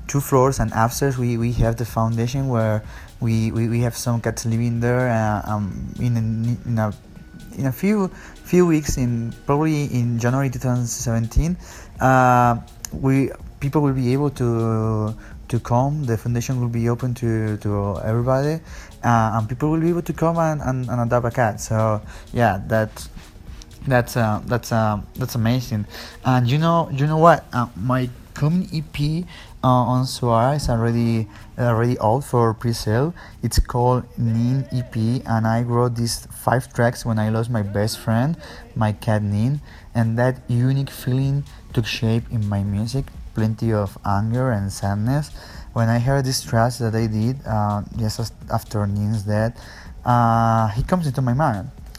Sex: male